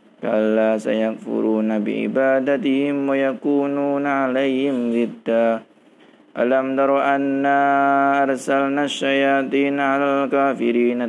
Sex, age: male, 20-39